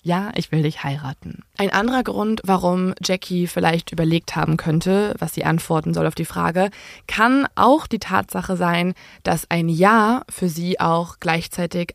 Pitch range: 165-210 Hz